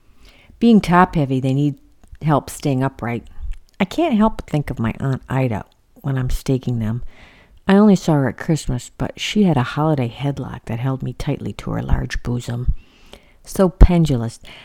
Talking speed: 170 wpm